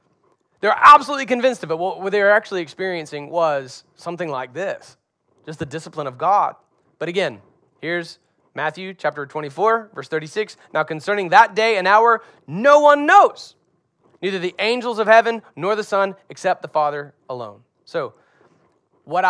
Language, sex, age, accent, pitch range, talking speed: English, male, 30-49, American, 135-185 Hz, 155 wpm